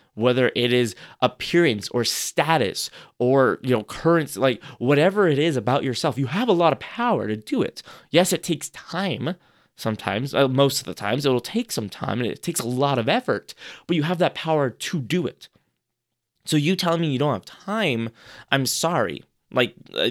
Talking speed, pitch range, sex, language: 195 wpm, 125-160 Hz, male, English